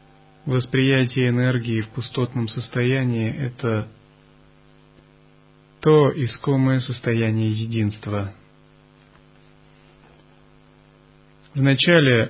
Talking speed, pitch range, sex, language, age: 55 wpm, 105-135 Hz, male, Russian, 30-49